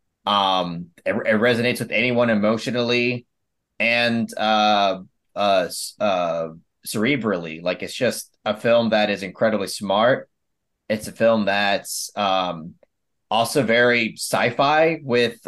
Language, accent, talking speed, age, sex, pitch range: English, American, 115 wpm, 30-49, male, 100-120 Hz